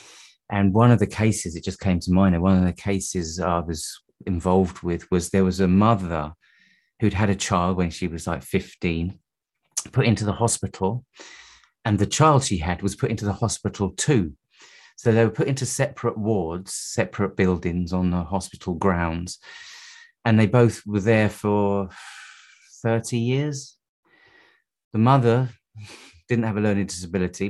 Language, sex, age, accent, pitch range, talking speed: English, male, 30-49, British, 90-115 Hz, 165 wpm